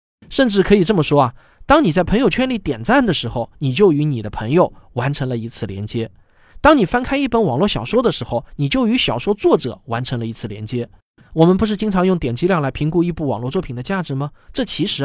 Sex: male